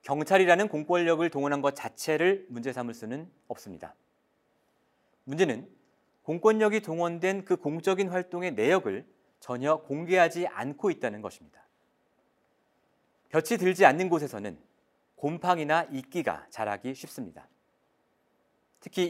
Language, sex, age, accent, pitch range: Korean, male, 40-59, native, 140-185 Hz